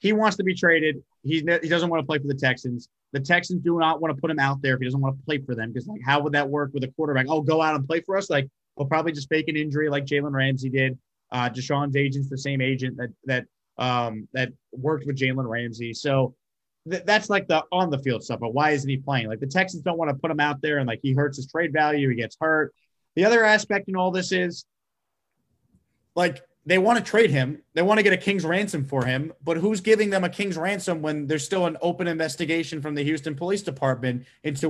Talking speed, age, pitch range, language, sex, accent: 255 wpm, 20-39, 135-185 Hz, English, male, American